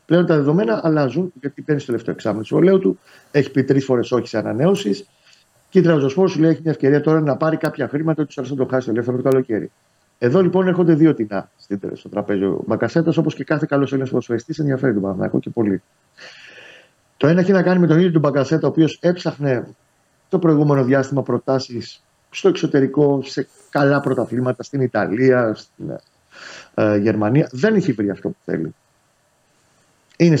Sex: male